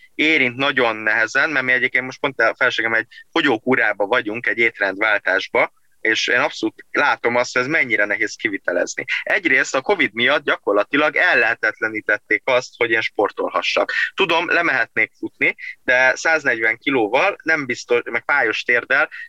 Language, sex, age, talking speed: Hungarian, male, 20-39, 145 wpm